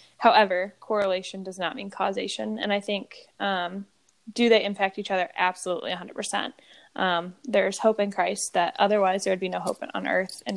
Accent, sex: American, female